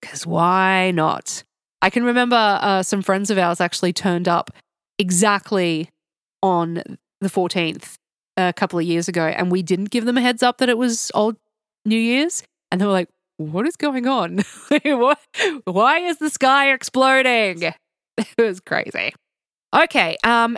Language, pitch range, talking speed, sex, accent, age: English, 175-235 Hz, 160 wpm, female, Australian, 20-39